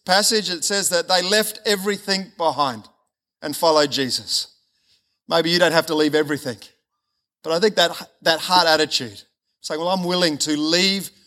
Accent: Australian